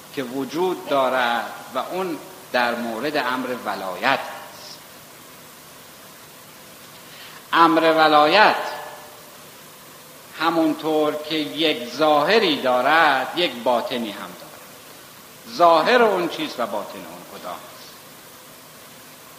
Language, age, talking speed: Persian, 60-79, 90 wpm